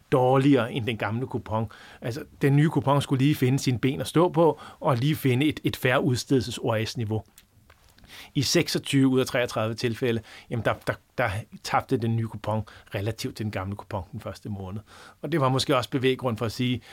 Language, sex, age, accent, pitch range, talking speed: Danish, male, 30-49, native, 115-140 Hz, 195 wpm